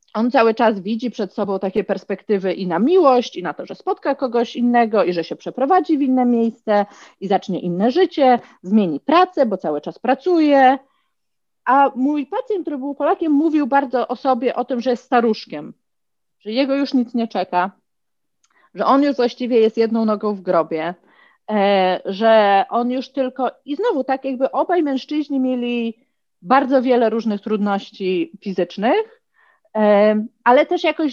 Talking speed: 160 wpm